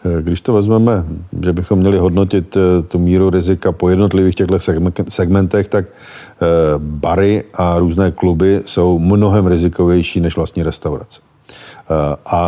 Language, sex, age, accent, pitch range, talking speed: Czech, male, 50-69, native, 85-95 Hz, 125 wpm